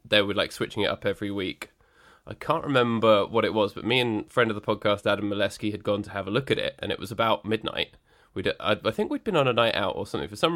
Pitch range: 100-115 Hz